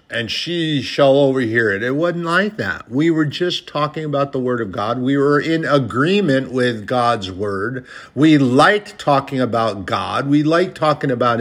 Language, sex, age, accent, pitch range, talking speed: English, male, 50-69, American, 120-155 Hz, 180 wpm